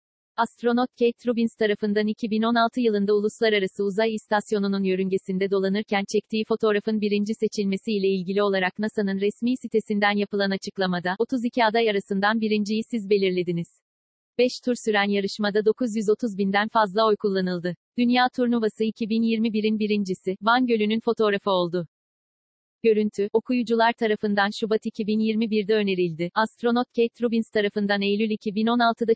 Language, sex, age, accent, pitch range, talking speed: Turkish, female, 40-59, native, 200-230 Hz, 120 wpm